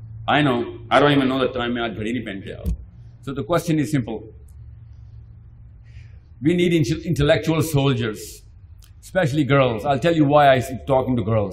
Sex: male